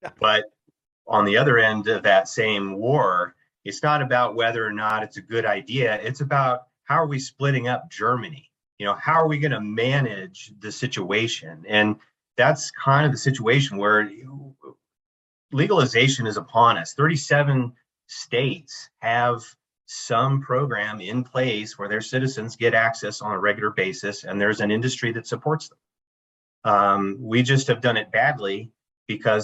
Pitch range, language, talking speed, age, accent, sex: 110-140 Hz, English, 165 wpm, 30-49, American, male